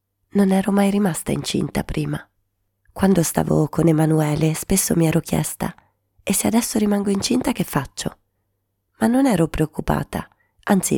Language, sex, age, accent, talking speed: Italian, female, 30-49, native, 140 wpm